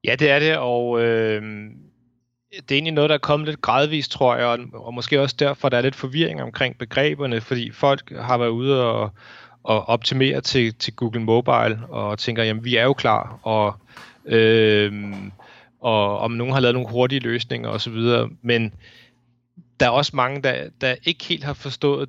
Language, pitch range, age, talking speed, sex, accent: Danish, 115-140 Hz, 30-49, 185 wpm, male, native